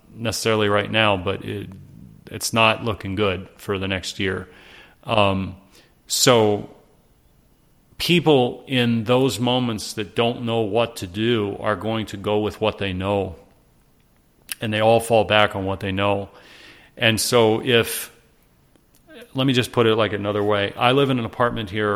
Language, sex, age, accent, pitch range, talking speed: English, male, 40-59, American, 100-120 Hz, 160 wpm